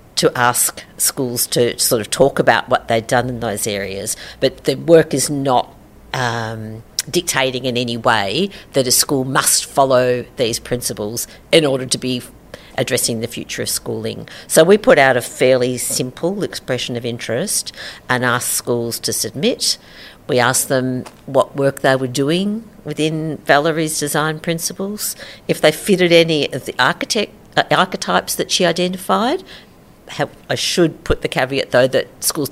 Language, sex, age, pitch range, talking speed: English, female, 50-69, 125-160 Hz, 160 wpm